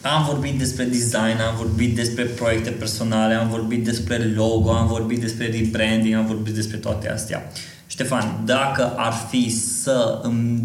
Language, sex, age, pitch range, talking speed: Romanian, male, 20-39, 110-120 Hz, 160 wpm